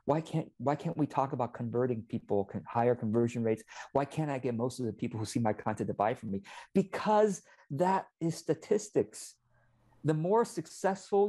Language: English